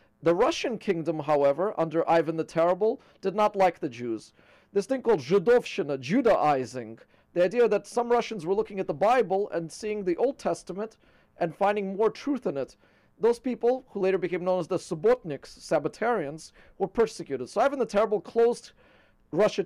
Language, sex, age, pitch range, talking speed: English, male, 40-59, 170-225 Hz, 175 wpm